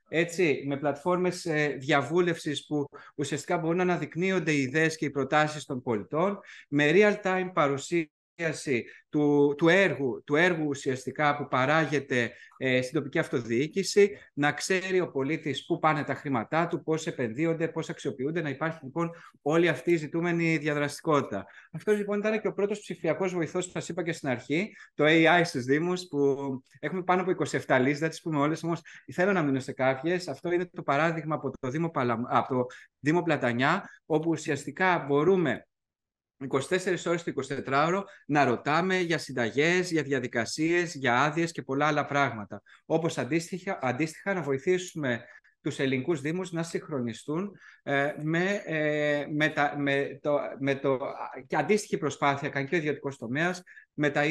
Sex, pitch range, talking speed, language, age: male, 140-175 Hz, 160 wpm, Greek, 30-49